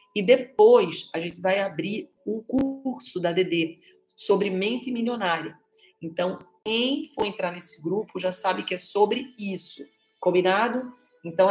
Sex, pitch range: female, 175-205 Hz